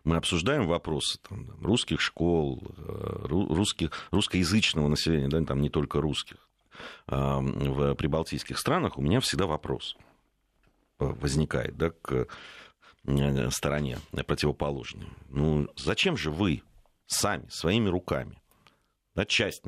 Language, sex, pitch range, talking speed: Russian, male, 75-100 Hz, 90 wpm